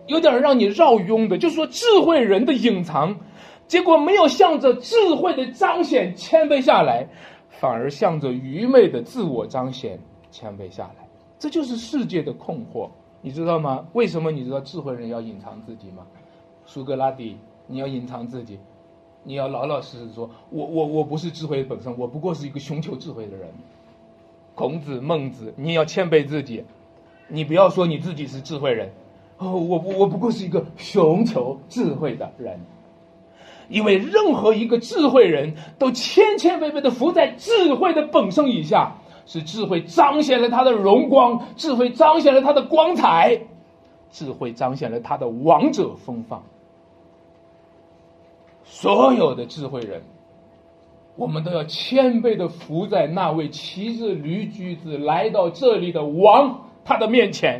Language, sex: Chinese, male